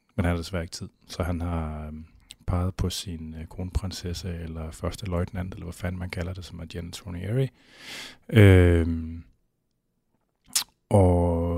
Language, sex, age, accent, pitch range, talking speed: Danish, male, 30-49, native, 85-100 Hz, 155 wpm